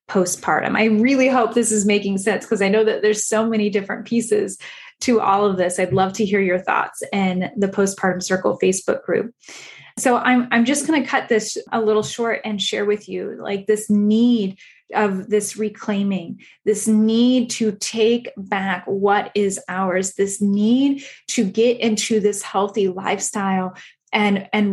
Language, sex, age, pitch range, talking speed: English, female, 10-29, 195-230 Hz, 175 wpm